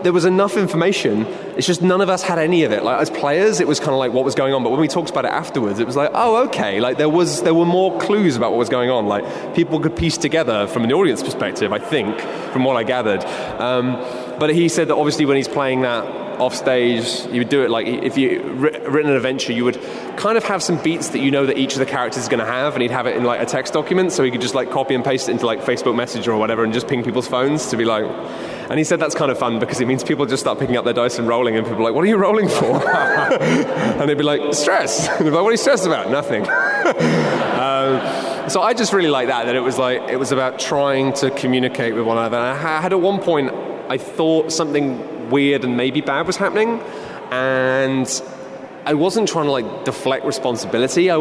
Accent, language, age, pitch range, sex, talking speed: British, English, 20-39, 125-160 Hz, male, 260 wpm